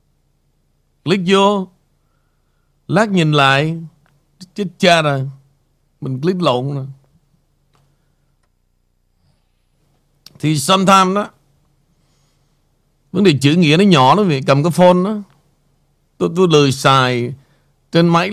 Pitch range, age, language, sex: 140-180 Hz, 60-79, Vietnamese, male